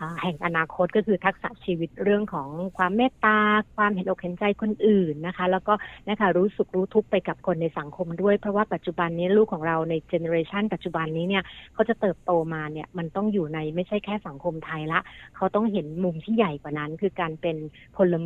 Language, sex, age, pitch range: Thai, female, 60-79, 170-215 Hz